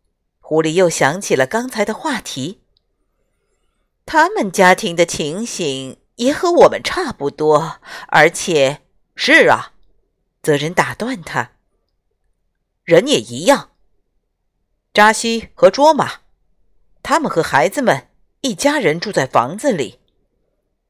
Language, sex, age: Chinese, female, 50-69